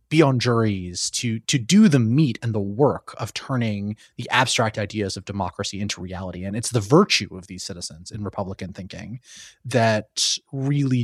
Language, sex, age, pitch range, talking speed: English, male, 30-49, 100-125 Hz, 170 wpm